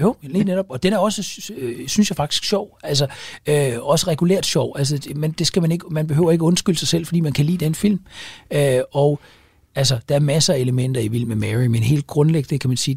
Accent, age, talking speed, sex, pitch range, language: native, 60-79, 225 wpm, male, 120-150 Hz, Danish